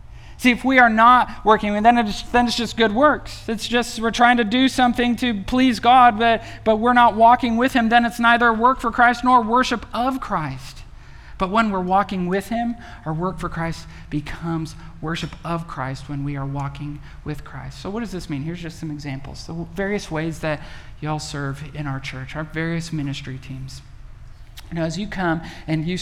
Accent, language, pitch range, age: American, English, 150-205 Hz, 40-59